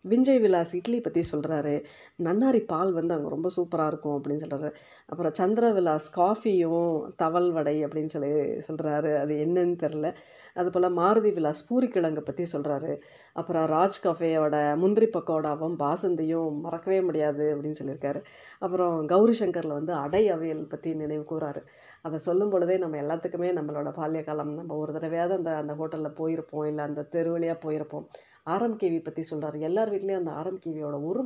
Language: Tamil